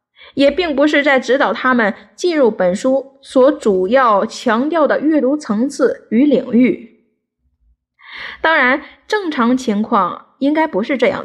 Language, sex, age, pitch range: Chinese, female, 10-29, 235-295 Hz